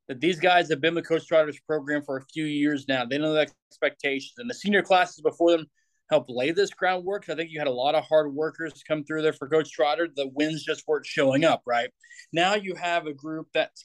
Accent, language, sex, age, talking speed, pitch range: American, English, male, 20-39, 245 wpm, 150-175 Hz